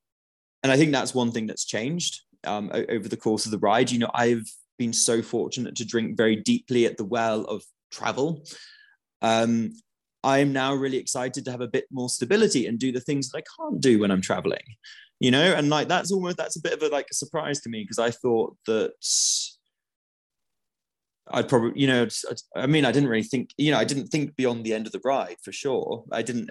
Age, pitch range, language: 20-39, 105-135 Hz, English